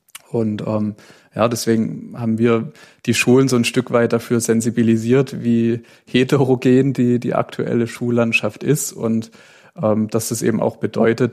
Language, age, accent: German, 30-49, German